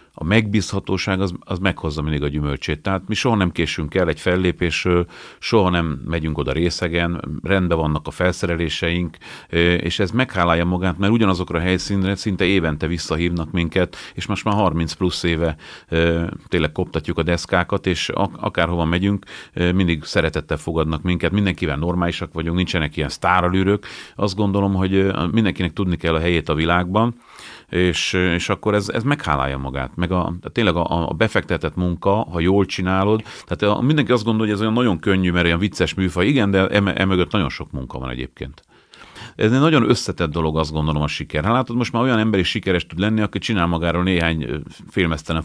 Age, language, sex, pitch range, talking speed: 40-59, Hungarian, male, 80-100 Hz, 180 wpm